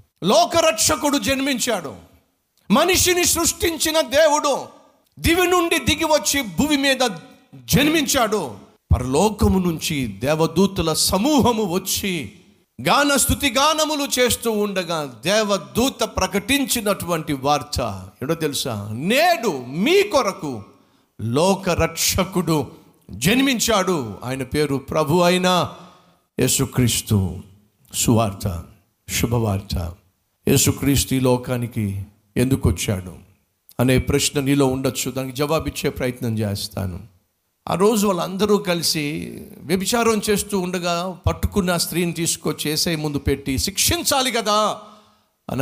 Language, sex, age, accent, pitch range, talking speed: Telugu, male, 50-69, native, 125-205 Hz, 75 wpm